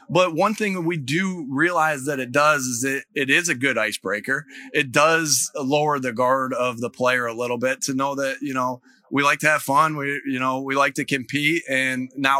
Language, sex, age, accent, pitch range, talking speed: English, male, 30-49, American, 110-135 Hz, 230 wpm